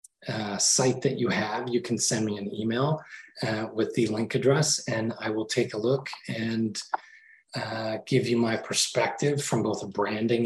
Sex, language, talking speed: male, English, 185 wpm